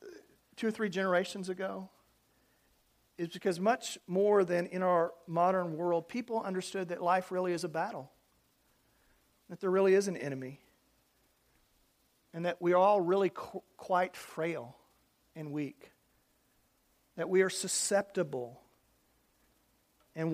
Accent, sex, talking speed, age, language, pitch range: American, male, 125 wpm, 40-59, English, 145-185 Hz